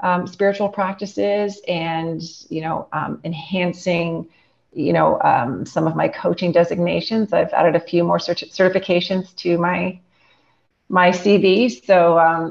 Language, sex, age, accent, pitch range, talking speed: English, female, 30-49, American, 165-195 Hz, 135 wpm